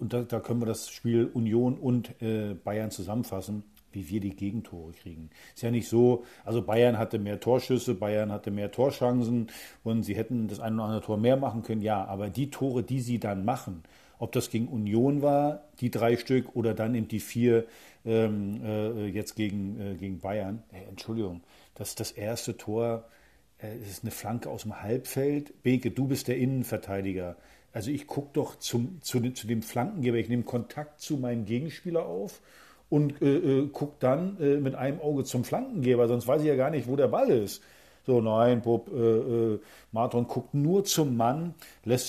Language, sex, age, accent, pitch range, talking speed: German, male, 50-69, German, 110-135 Hz, 195 wpm